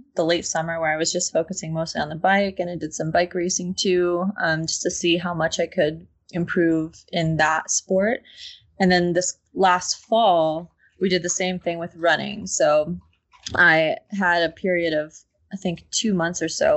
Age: 20-39